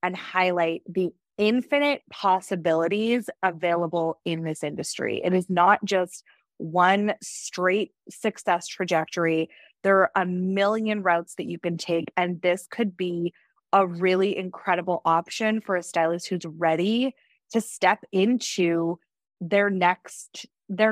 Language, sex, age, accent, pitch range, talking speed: English, female, 20-39, American, 175-205 Hz, 125 wpm